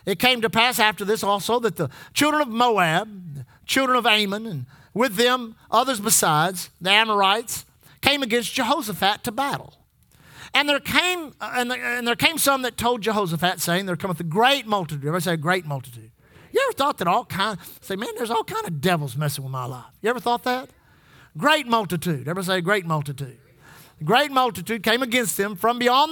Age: 50-69